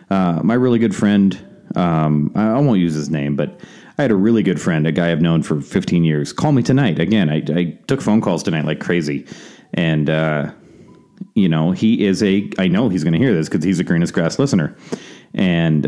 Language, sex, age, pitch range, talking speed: English, male, 30-49, 80-95 Hz, 225 wpm